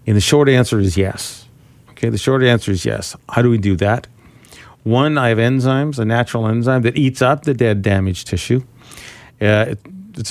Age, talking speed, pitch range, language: 50-69, 200 wpm, 105-130 Hz, English